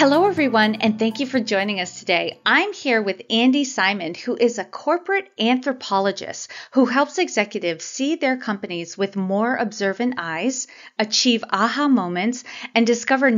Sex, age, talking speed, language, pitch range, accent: female, 40-59, 155 wpm, English, 195-260 Hz, American